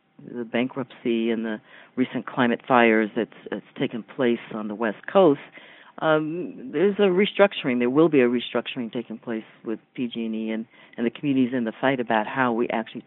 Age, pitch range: 50-69, 115-145 Hz